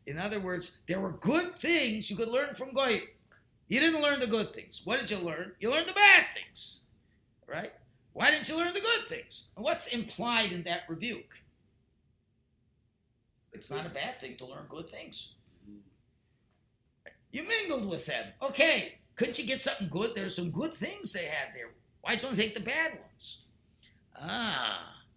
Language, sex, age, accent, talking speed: English, male, 50-69, American, 180 wpm